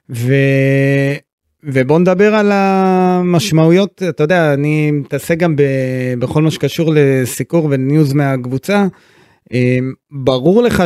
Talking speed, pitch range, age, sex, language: 105 wpm, 130-155 Hz, 30-49, male, Hebrew